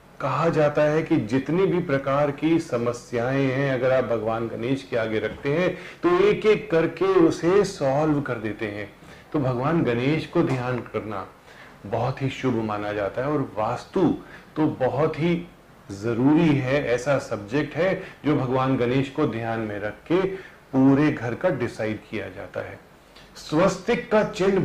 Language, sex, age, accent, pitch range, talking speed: Hindi, male, 40-59, native, 120-170 Hz, 160 wpm